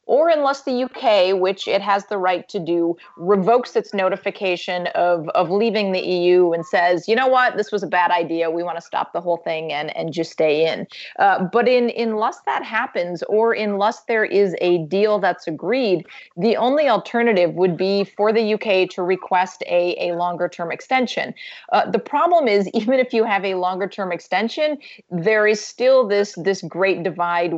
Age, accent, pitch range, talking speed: 30-49, American, 180-225 Hz, 195 wpm